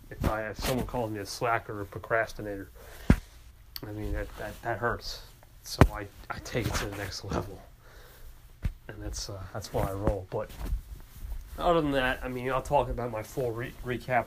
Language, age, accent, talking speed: English, 30-49, American, 195 wpm